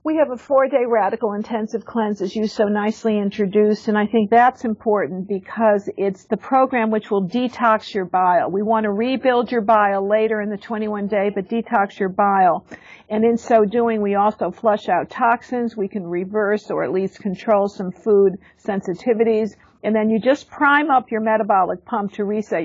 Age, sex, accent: 50-69, female, American